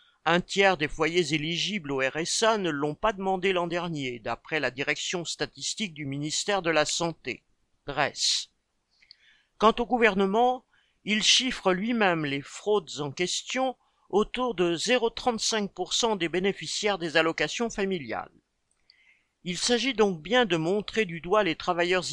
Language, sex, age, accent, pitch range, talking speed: French, male, 50-69, French, 160-210 Hz, 140 wpm